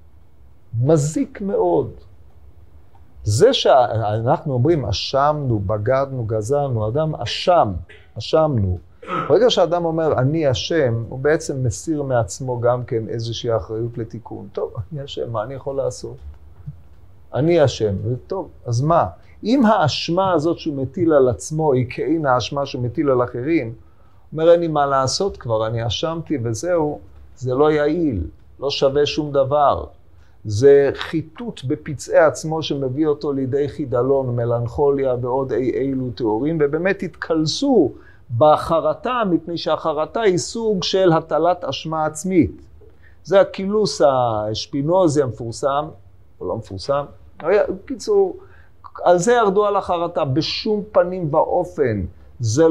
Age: 40-59